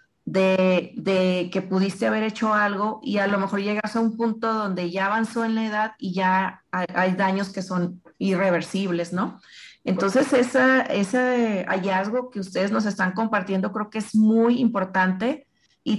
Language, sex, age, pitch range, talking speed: Spanish, female, 30-49, 185-220 Hz, 170 wpm